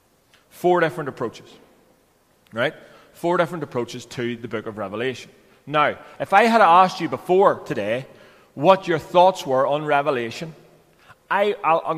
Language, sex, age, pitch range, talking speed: English, male, 30-49, 130-170 Hz, 145 wpm